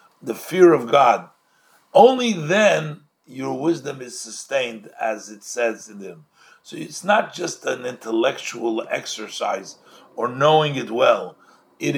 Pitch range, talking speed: 115-175 Hz, 135 wpm